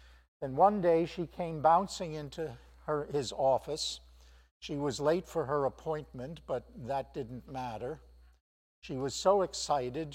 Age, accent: 60-79, American